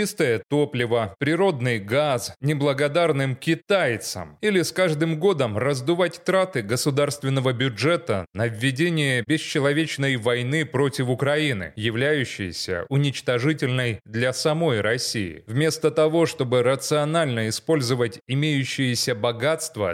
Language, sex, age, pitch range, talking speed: Russian, male, 20-39, 125-155 Hz, 95 wpm